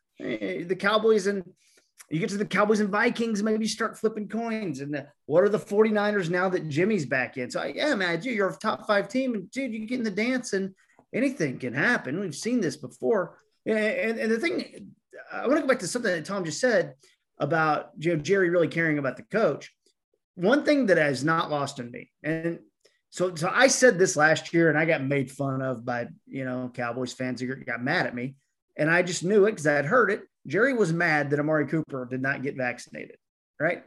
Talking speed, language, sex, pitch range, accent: 230 wpm, English, male, 145-210 Hz, American